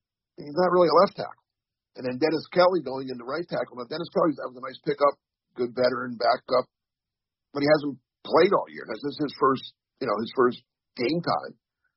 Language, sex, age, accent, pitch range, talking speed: English, male, 50-69, American, 105-145 Hz, 210 wpm